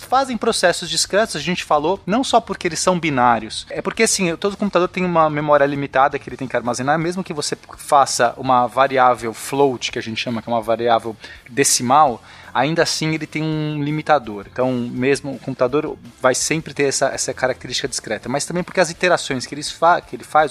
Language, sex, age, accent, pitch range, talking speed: Portuguese, male, 20-39, Brazilian, 130-175 Hz, 200 wpm